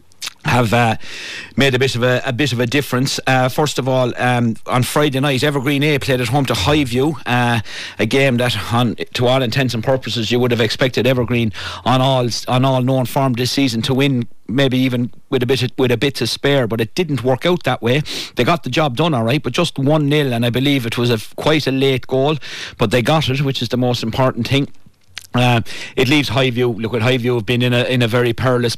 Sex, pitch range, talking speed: male, 120-135 Hz, 240 wpm